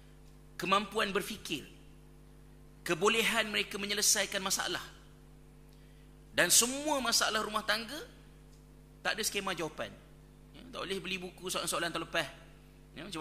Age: 30-49